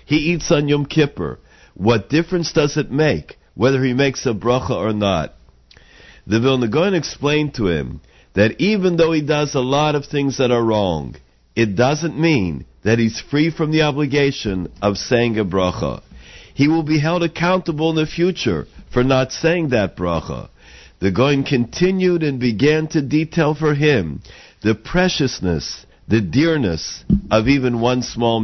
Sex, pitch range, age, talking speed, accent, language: male, 100-150 Hz, 50-69, 165 wpm, American, English